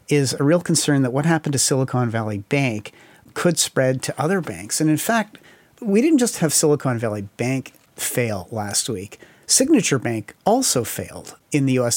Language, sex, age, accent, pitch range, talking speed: English, male, 40-59, American, 125-165 Hz, 180 wpm